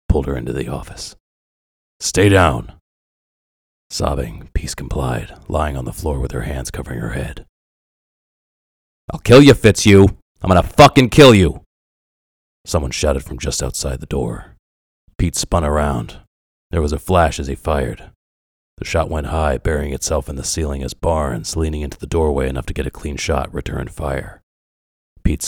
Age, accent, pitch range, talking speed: 40-59, American, 65-80 Hz, 165 wpm